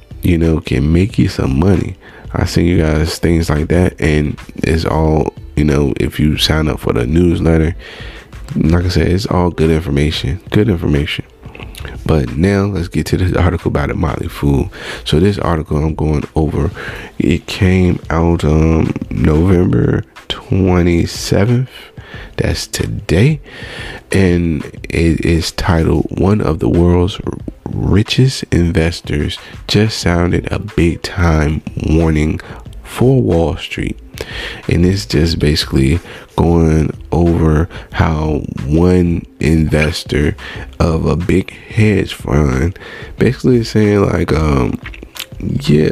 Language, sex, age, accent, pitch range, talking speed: English, male, 30-49, American, 75-90 Hz, 130 wpm